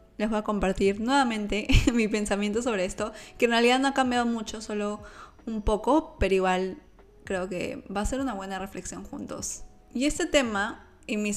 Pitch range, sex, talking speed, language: 200-240 Hz, female, 185 wpm, Spanish